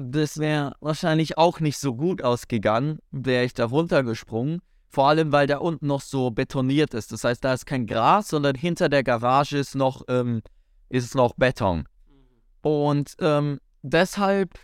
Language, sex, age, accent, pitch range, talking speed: German, male, 20-39, German, 125-170 Hz, 165 wpm